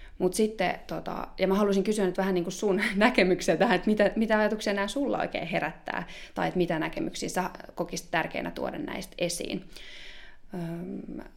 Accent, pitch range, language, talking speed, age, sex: native, 160-200 Hz, Finnish, 160 wpm, 20-39, female